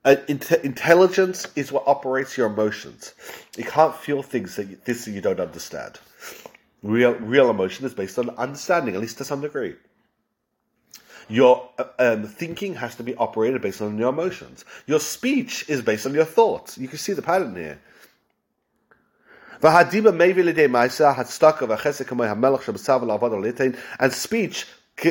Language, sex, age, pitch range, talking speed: English, male, 40-59, 130-175 Hz, 130 wpm